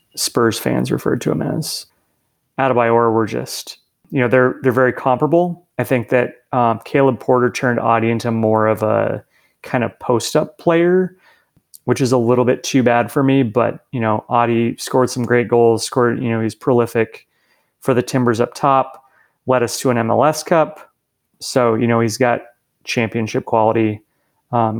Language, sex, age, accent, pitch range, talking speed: English, male, 30-49, American, 115-130 Hz, 175 wpm